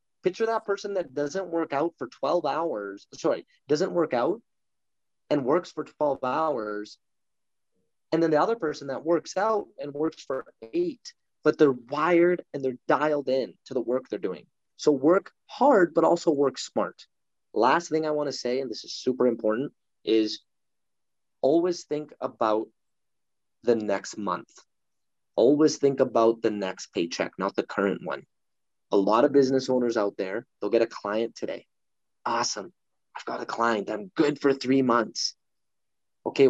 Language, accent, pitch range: English, American, 125-185 Hz